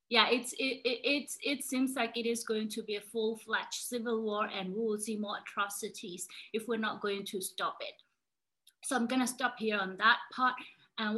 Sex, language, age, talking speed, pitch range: female, English, 30-49, 210 wpm, 210-240 Hz